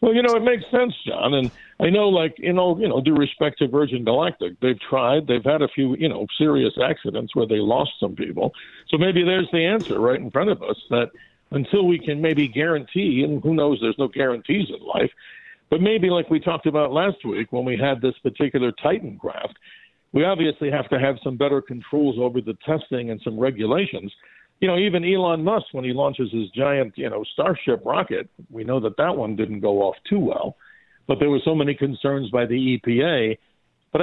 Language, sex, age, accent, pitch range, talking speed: English, male, 50-69, American, 125-170 Hz, 215 wpm